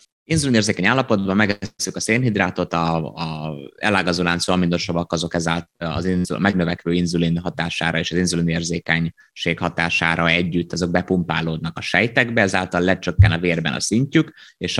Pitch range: 85-95 Hz